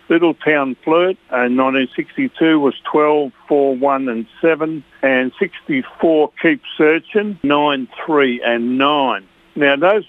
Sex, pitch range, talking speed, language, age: male, 125-150 Hz, 130 wpm, English, 60-79